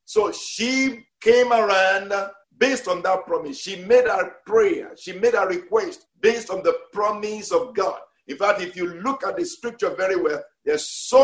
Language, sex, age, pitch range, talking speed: English, male, 50-69, 210-310 Hz, 180 wpm